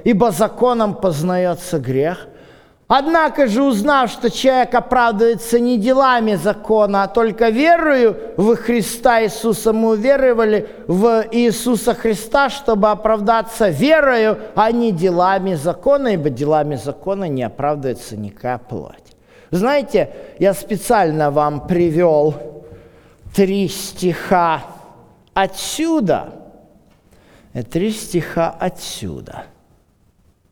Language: Russian